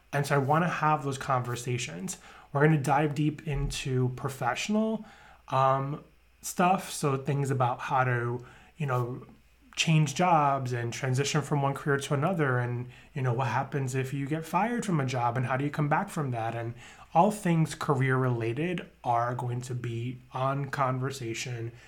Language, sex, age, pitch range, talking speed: English, male, 20-39, 125-150 Hz, 175 wpm